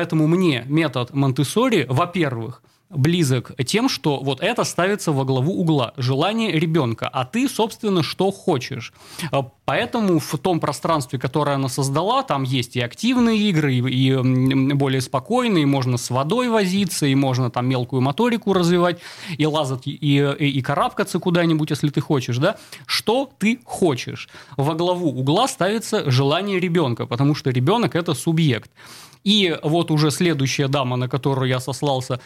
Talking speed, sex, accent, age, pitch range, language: 155 wpm, male, native, 20-39, 135-180 Hz, Russian